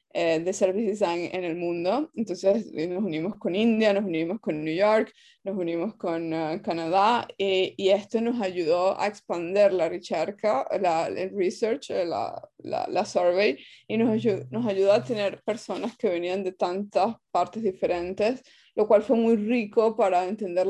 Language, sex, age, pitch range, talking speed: Spanish, female, 20-39, 185-225 Hz, 170 wpm